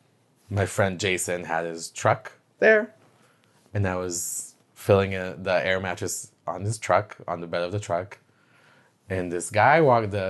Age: 20-39